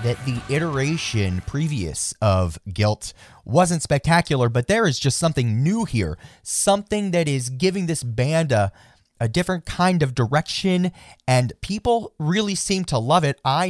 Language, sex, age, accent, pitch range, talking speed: English, male, 30-49, American, 120-165 Hz, 155 wpm